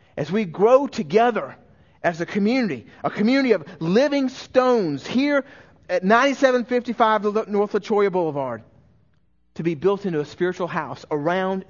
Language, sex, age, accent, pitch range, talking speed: English, male, 40-59, American, 130-215 Hz, 135 wpm